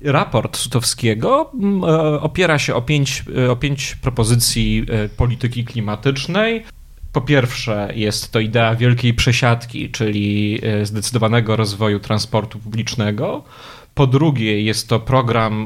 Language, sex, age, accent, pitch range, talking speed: Polish, male, 30-49, native, 110-130 Hz, 105 wpm